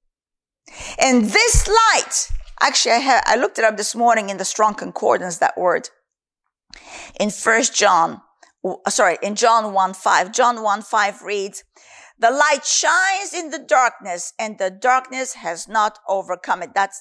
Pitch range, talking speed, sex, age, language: 215-345 Hz, 160 wpm, female, 50-69, English